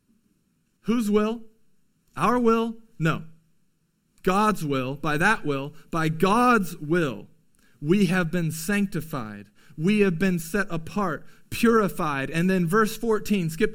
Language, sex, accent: English, male, American